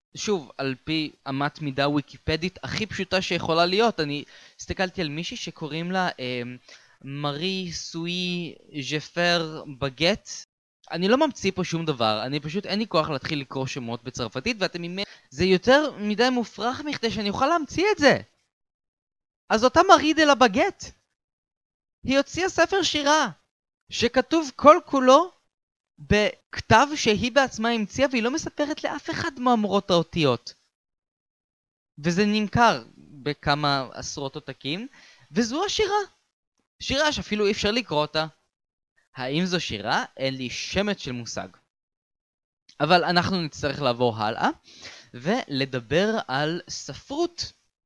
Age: 20-39